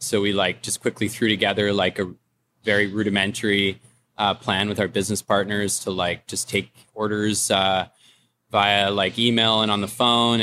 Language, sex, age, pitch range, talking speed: English, male, 20-39, 100-110 Hz, 175 wpm